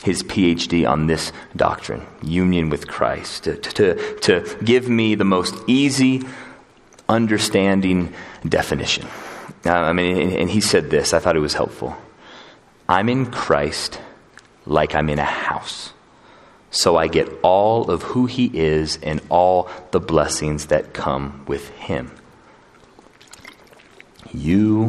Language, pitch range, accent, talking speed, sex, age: English, 80-105 Hz, American, 130 wpm, male, 30-49